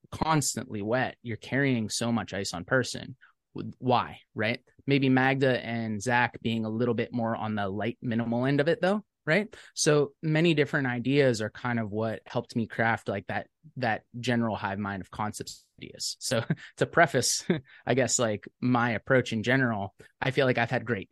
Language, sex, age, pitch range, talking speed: English, male, 20-39, 110-130 Hz, 185 wpm